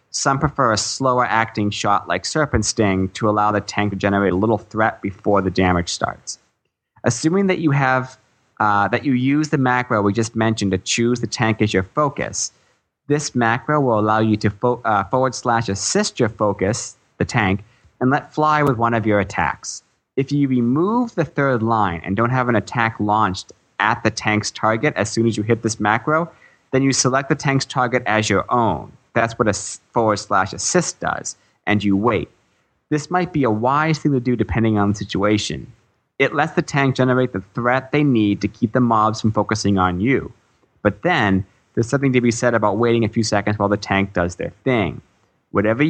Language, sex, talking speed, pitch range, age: English, male, 200 wpm, 100-130 Hz, 30-49